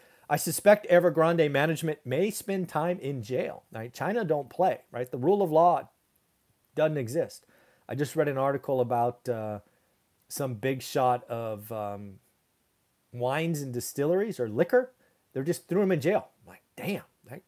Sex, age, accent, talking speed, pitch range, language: male, 40-59, American, 160 wpm, 135-185 Hz, English